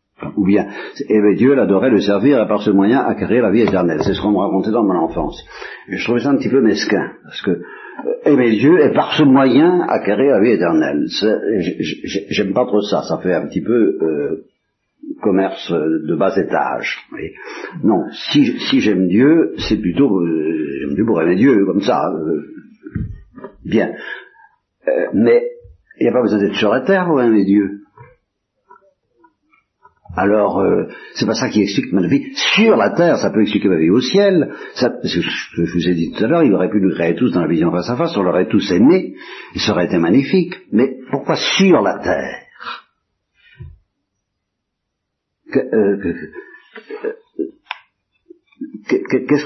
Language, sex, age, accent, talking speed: Italian, male, 60-79, French, 175 wpm